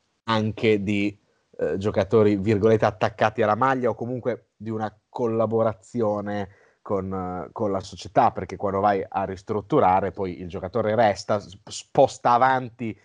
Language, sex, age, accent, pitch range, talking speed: Italian, male, 30-49, native, 95-120 Hz, 130 wpm